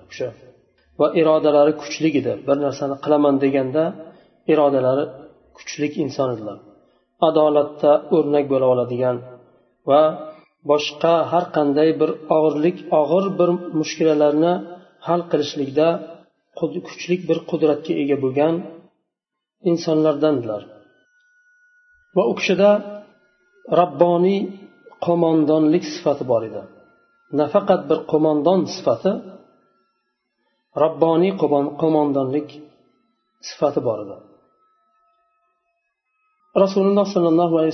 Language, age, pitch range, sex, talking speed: Russian, 40-59, 150-180 Hz, male, 80 wpm